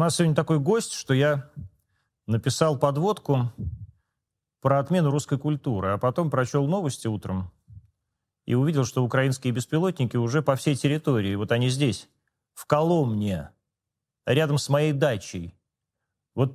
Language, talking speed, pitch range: Russian, 135 wpm, 115-160 Hz